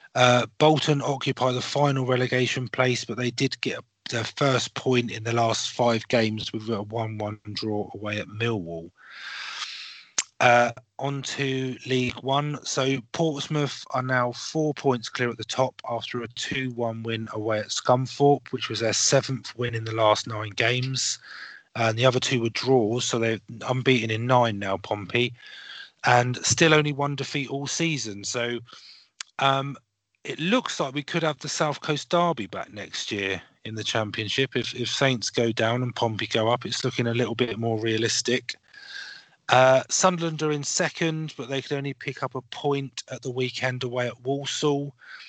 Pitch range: 115-140 Hz